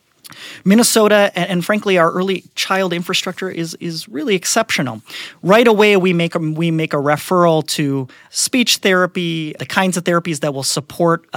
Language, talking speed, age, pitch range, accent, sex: English, 155 wpm, 30-49, 155-220 Hz, American, male